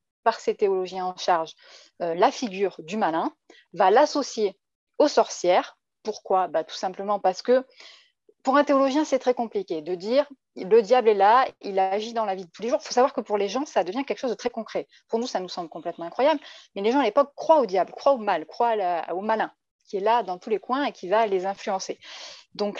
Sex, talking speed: female, 240 wpm